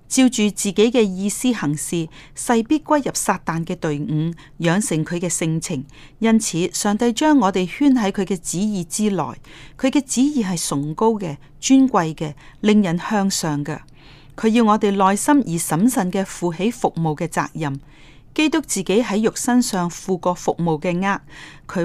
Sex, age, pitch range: female, 30-49, 155-220 Hz